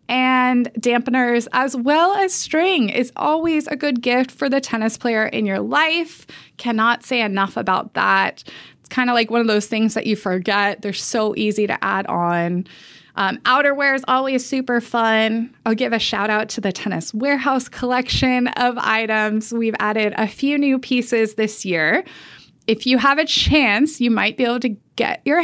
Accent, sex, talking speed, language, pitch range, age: American, female, 185 wpm, English, 210-255 Hz, 20-39